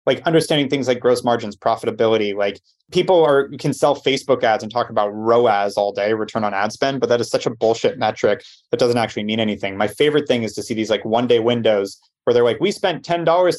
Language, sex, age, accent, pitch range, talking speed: English, male, 30-49, American, 110-140 Hz, 235 wpm